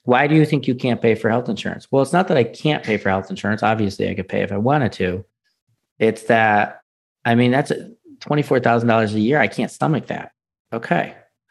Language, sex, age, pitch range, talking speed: English, male, 40-59, 110-135 Hz, 215 wpm